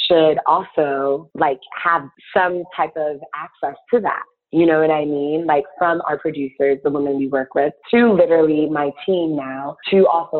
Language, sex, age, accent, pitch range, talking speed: English, female, 20-39, American, 145-185 Hz, 180 wpm